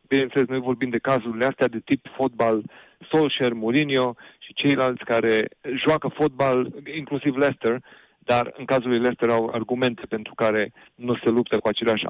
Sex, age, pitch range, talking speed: male, 40-59, 115-155 Hz, 160 wpm